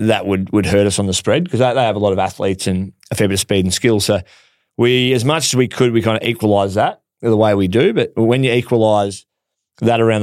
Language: English